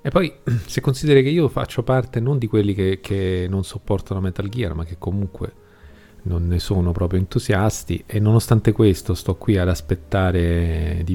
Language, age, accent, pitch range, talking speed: Italian, 40-59, native, 90-115 Hz, 180 wpm